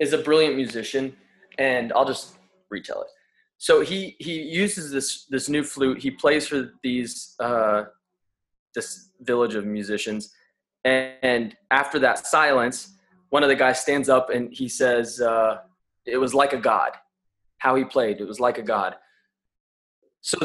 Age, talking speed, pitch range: 20-39, 160 wpm, 120-145 Hz